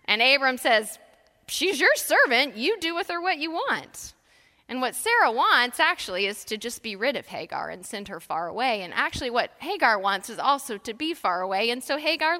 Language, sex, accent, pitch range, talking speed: English, female, American, 210-300 Hz, 215 wpm